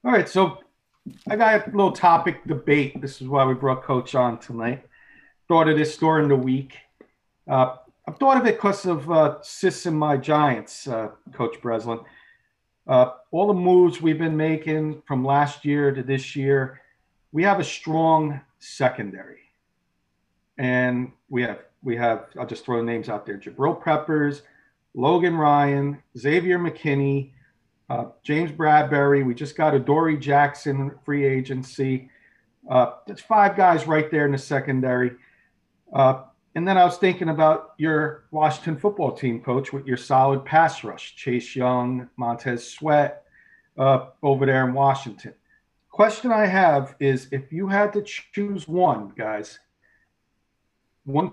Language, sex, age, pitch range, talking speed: English, male, 40-59, 130-160 Hz, 155 wpm